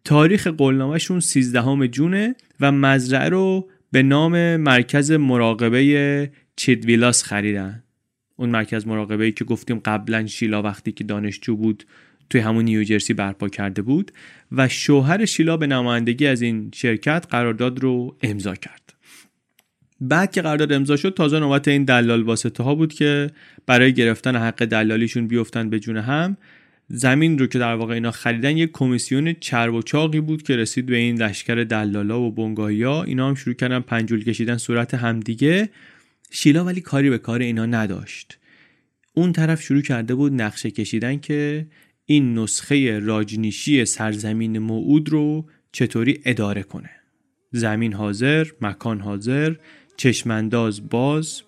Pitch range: 110-145 Hz